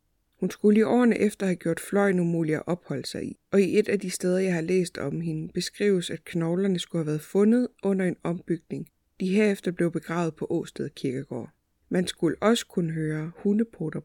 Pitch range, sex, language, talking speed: 160-195 Hz, female, Danish, 200 wpm